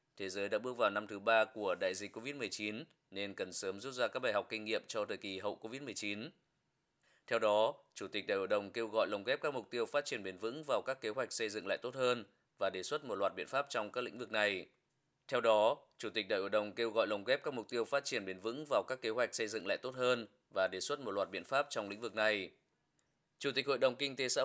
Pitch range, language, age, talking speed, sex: 110-130 Hz, Vietnamese, 20-39, 270 wpm, male